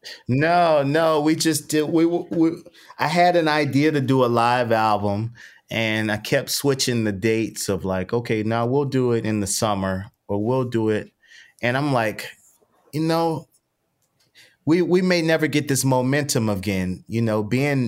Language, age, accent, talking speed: English, 30-49, American, 175 wpm